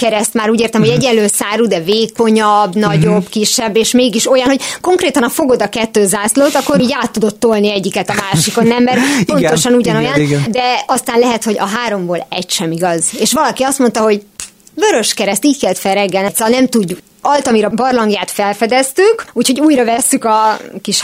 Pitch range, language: 190-250 Hz, Hungarian